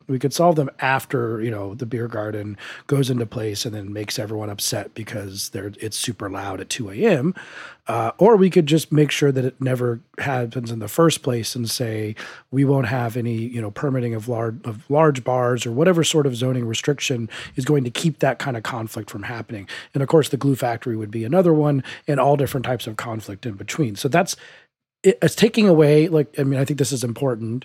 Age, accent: 30-49, American